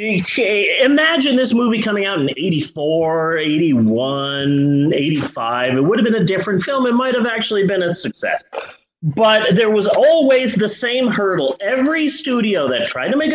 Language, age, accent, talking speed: English, 30-49, American, 160 wpm